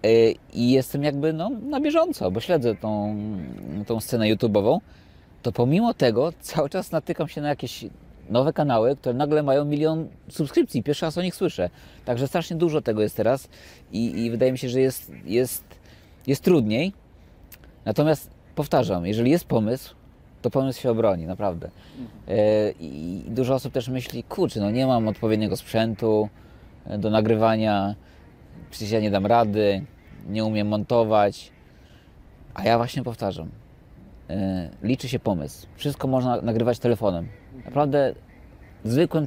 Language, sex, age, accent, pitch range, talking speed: Polish, male, 20-39, native, 105-140 Hz, 145 wpm